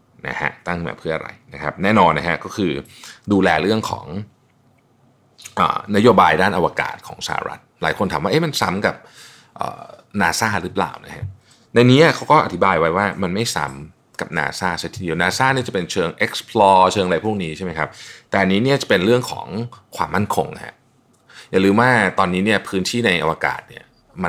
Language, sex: Thai, male